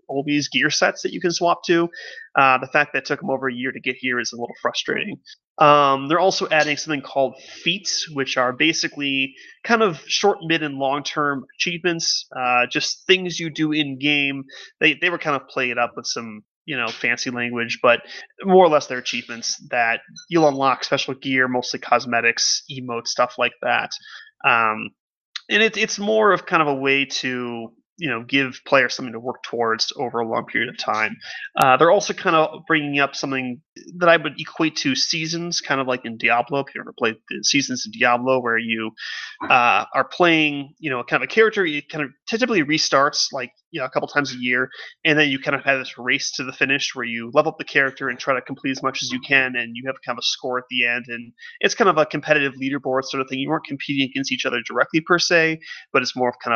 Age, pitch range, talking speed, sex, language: 30-49, 125-165 Hz, 230 wpm, male, English